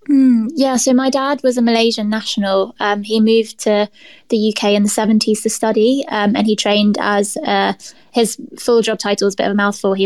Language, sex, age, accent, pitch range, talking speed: English, female, 20-39, British, 205-230 Hz, 220 wpm